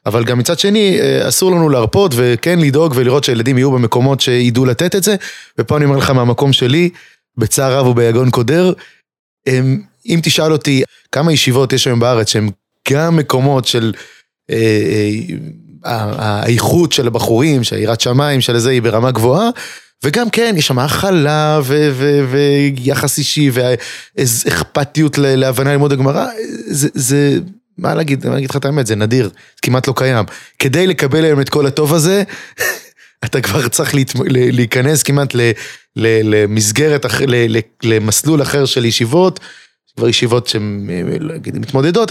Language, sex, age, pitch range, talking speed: Hebrew, male, 20-39, 120-155 Hz, 145 wpm